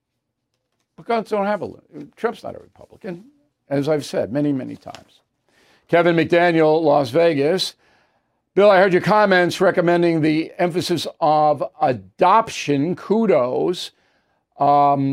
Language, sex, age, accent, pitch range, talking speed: English, male, 50-69, American, 145-200 Hz, 105 wpm